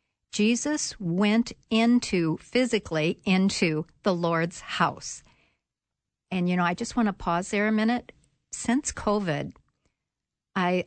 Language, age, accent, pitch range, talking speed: English, 50-69, American, 170-210 Hz, 120 wpm